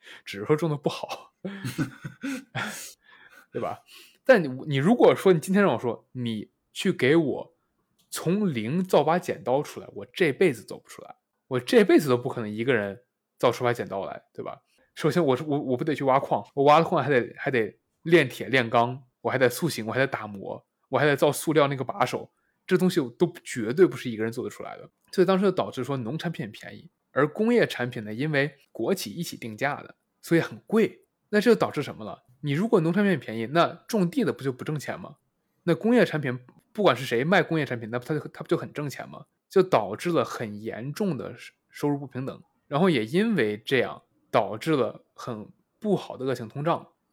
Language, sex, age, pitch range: Chinese, male, 20-39, 125-170 Hz